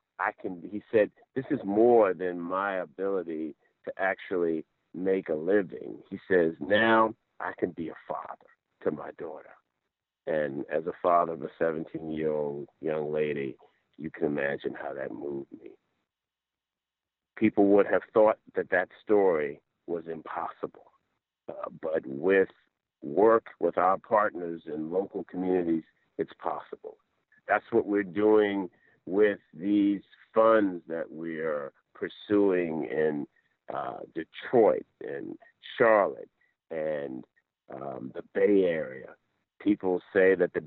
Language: English